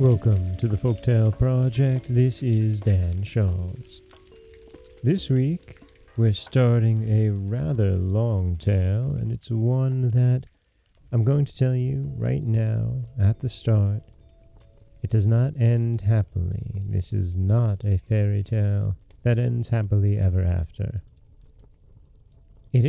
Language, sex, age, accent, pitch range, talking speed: English, male, 30-49, American, 100-125 Hz, 125 wpm